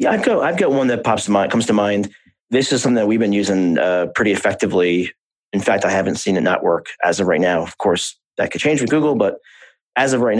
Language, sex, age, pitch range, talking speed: English, male, 30-49, 95-120 Hz, 265 wpm